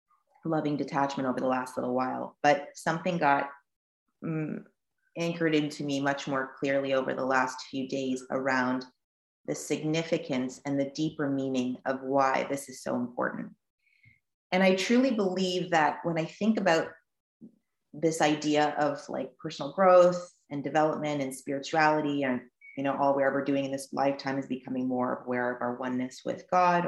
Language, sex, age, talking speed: English, female, 30-49, 165 wpm